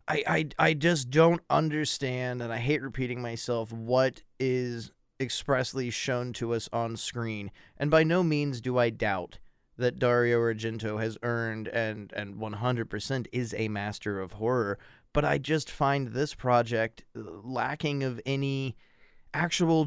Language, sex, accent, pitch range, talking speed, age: English, male, American, 115-135 Hz, 145 wpm, 30-49